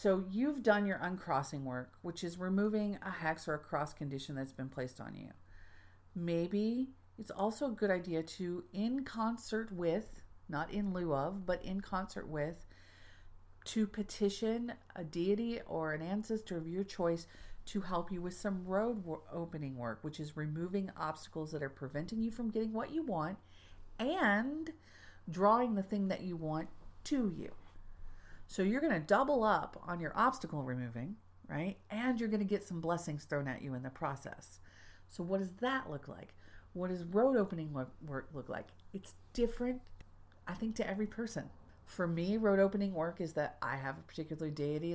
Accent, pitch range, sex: American, 135-205 Hz, female